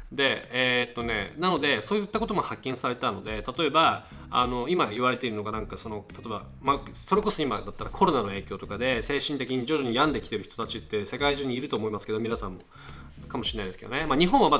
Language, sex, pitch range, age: Japanese, male, 110-150 Hz, 20-39